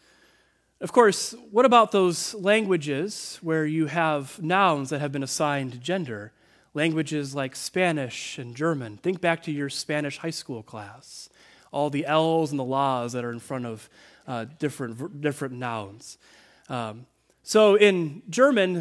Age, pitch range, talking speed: 30-49, 135-190 Hz, 150 wpm